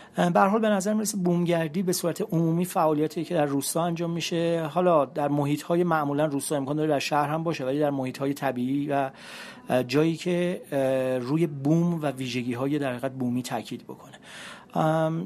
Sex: male